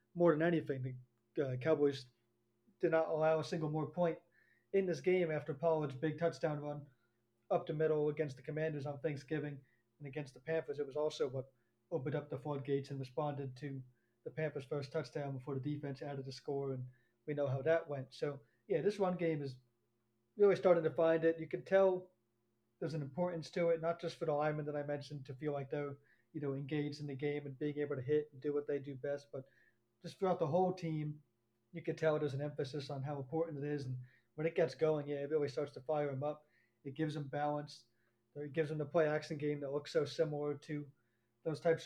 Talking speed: 220 wpm